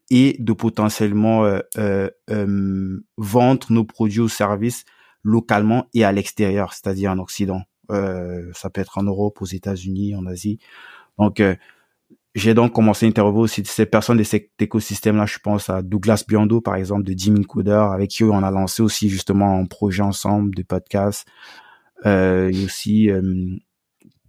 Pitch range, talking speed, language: 95-110 Hz, 170 wpm, French